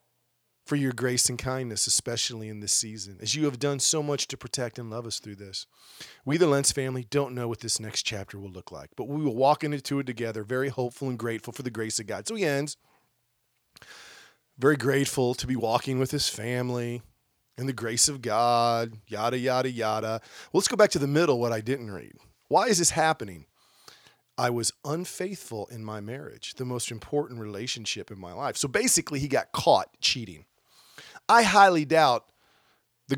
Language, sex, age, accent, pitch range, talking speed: English, male, 40-59, American, 115-140 Hz, 195 wpm